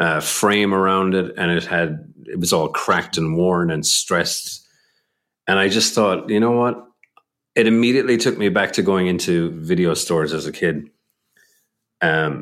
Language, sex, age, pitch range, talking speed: English, male, 40-59, 85-115 Hz, 175 wpm